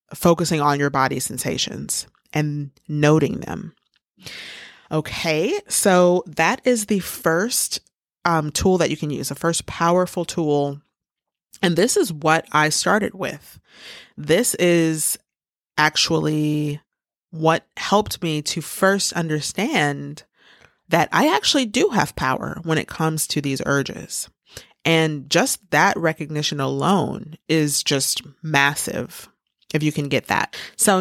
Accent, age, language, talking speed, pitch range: American, 30-49, English, 130 wpm, 150-190 Hz